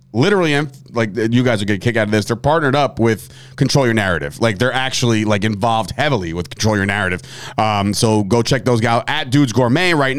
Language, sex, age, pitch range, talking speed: English, male, 30-49, 110-150 Hz, 225 wpm